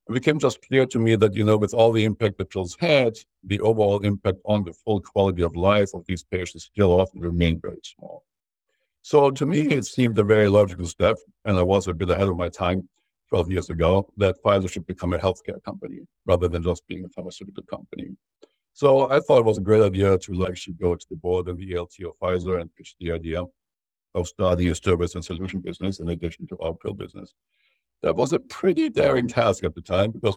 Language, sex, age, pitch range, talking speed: English, male, 60-79, 90-110 Hz, 225 wpm